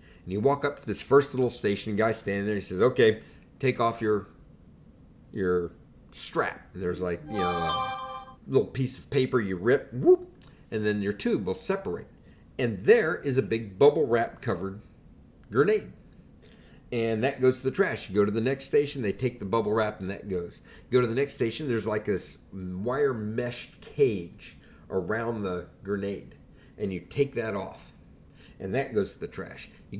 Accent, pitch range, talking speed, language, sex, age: American, 100-140 Hz, 190 wpm, English, male, 50-69